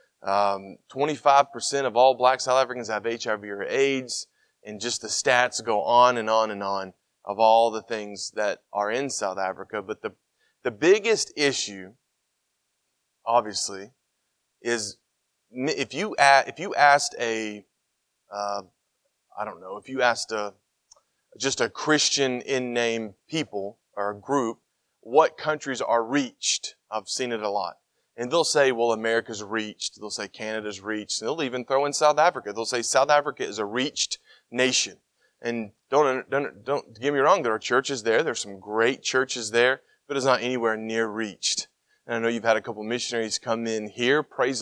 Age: 30-49